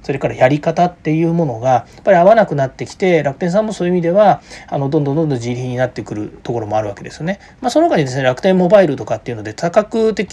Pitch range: 125-175 Hz